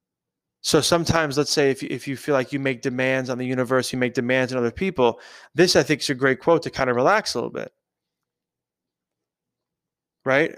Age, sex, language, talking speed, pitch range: 20-39, male, English, 205 wpm, 125-145 Hz